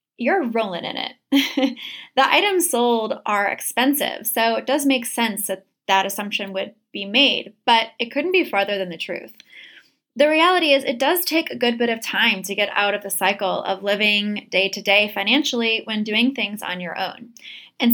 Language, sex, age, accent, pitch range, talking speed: English, female, 10-29, American, 200-265 Hz, 185 wpm